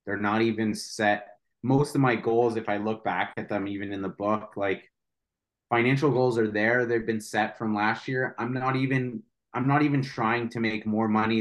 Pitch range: 110-125 Hz